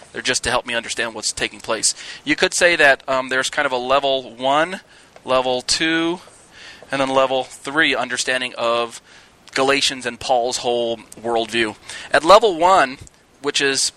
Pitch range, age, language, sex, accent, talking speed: 130-165 Hz, 20-39, English, male, American, 165 wpm